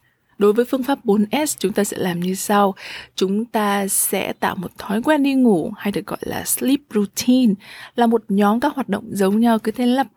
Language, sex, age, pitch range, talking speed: Vietnamese, female, 20-39, 190-235 Hz, 220 wpm